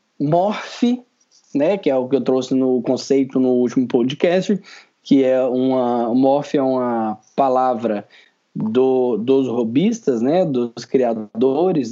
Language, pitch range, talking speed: Portuguese, 130-160 Hz, 130 wpm